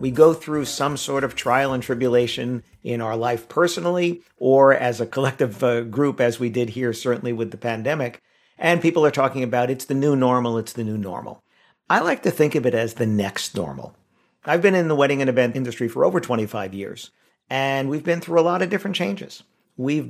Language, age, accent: English, 50-69, American